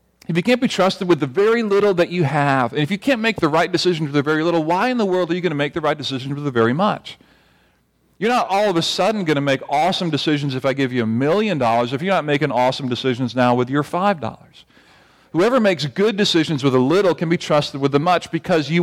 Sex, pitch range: male, 130-175 Hz